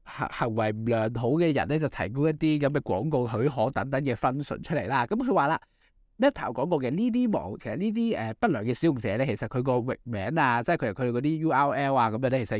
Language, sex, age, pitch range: Chinese, male, 20-39, 110-145 Hz